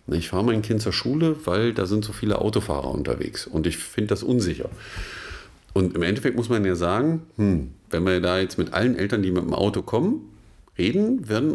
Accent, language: German, German